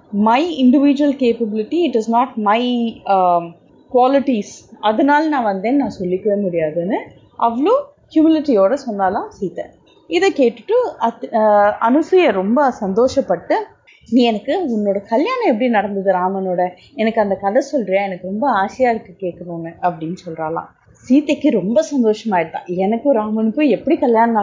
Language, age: Tamil, 30-49